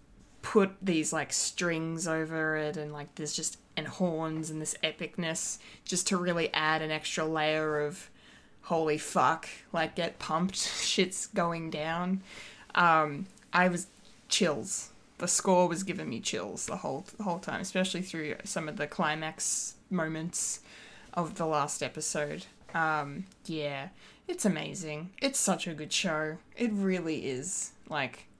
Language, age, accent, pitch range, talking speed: English, 20-39, Australian, 155-195 Hz, 145 wpm